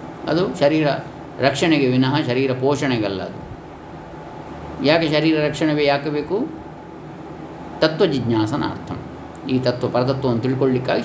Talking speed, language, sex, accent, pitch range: 100 wpm, Kannada, male, native, 105-140 Hz